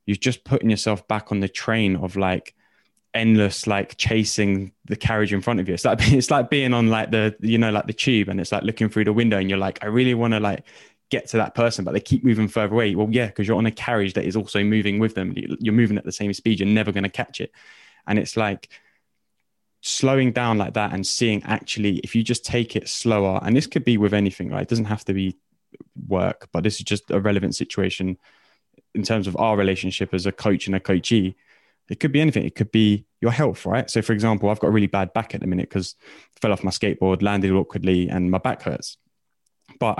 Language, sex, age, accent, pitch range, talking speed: English, male, 10-29, British, 100-115 Hz, 245 wpm